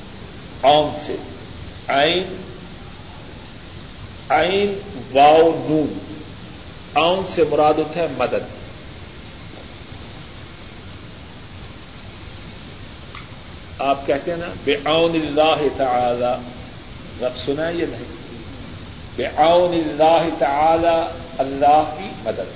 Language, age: Urdu, 50-69